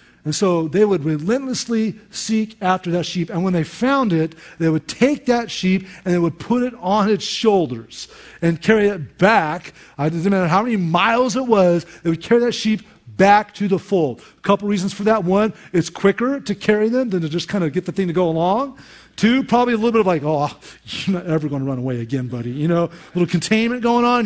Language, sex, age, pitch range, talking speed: English, male, 40-59, 140-200 Hz, 235 wpm